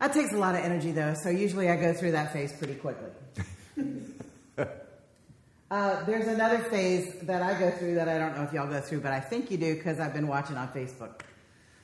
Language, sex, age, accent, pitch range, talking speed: English, female, 40-59, American, 135-175 Hz, 220 wpm